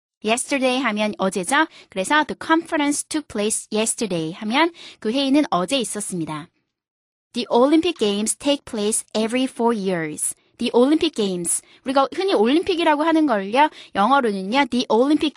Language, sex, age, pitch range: Korean, female, 20-39, 215-300 Hz